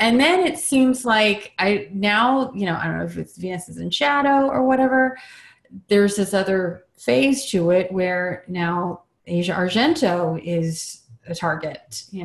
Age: 30-49